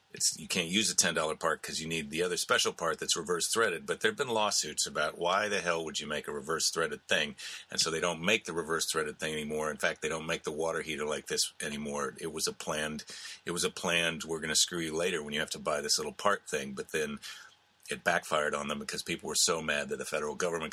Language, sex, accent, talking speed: English, male, American, 265 wpm